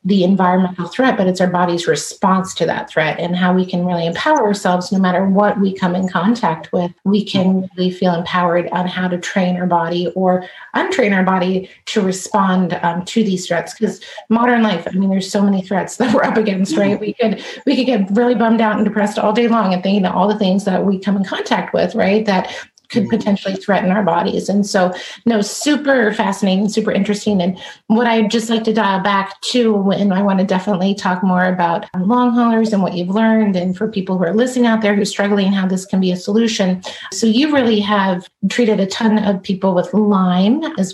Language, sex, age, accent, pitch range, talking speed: English, female, 30-49, American, 185-215 Hz, 225 wpm